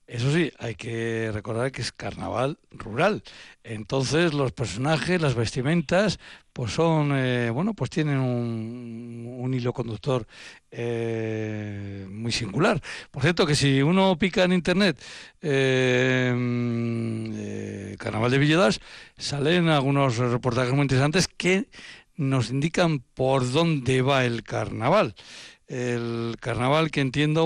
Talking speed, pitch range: 125 wpm, 115-155 Hz